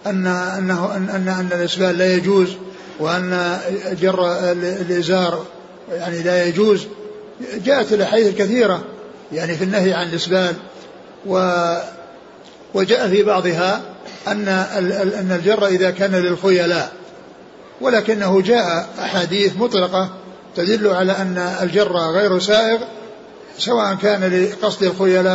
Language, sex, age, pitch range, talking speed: Arabic, male, 60-79, 180-205 Hz, 105 wpm